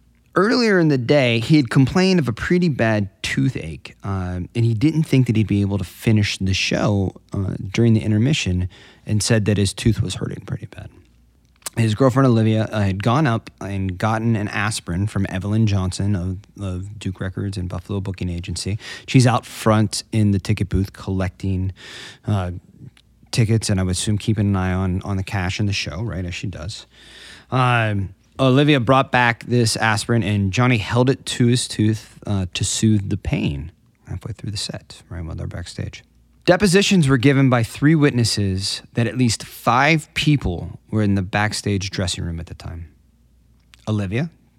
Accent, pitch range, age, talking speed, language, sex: American, 95-120 Hz, 30-49, 185 wpm, English, male